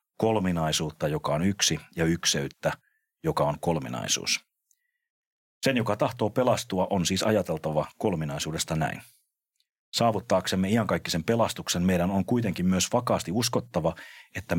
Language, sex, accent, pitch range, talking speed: Finnish, male, native, 80-105 Hz, 115 wpm